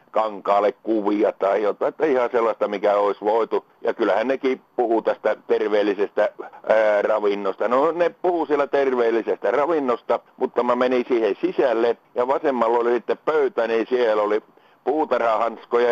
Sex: male